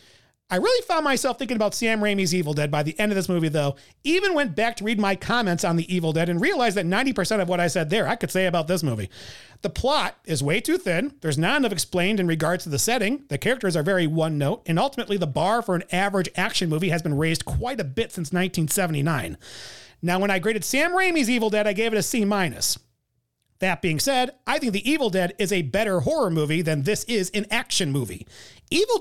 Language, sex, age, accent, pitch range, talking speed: English, male, 40-59, American, 160-235 Hz, 235 wpm